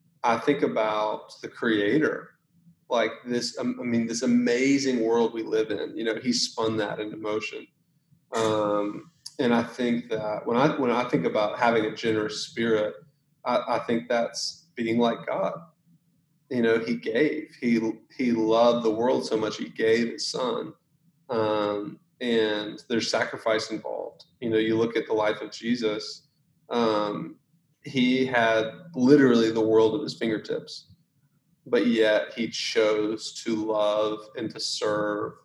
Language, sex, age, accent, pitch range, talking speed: English, male, 30-49, American, 110-145 Hz, 155 wpm